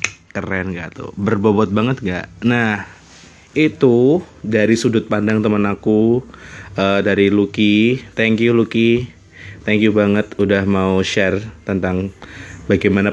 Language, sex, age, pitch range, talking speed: Indonesian, male, 20-39, 95-115 Hz, 125 wpm